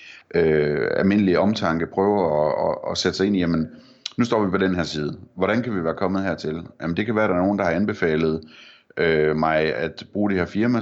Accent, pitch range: native, 85-100 Hz